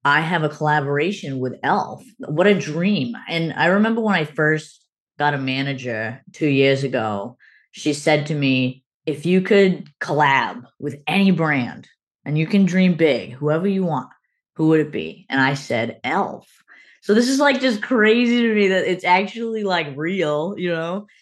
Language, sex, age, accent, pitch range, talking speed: English, female, 20-39, American, 145-185 Hz, 180 wpm